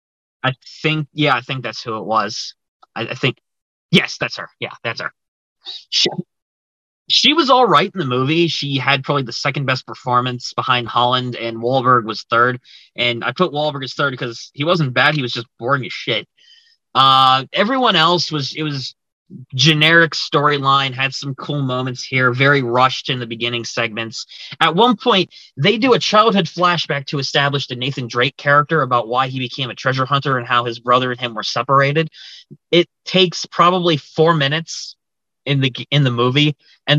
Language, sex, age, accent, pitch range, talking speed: English, male, 30-49, American, 125-155 Hz, 185 wpm